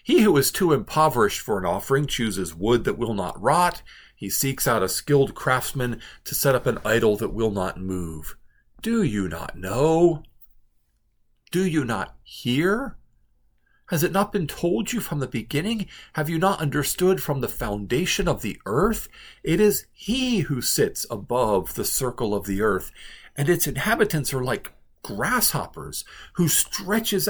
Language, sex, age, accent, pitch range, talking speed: English, male, 50-69, American, 115-185 Hz, 165 wpm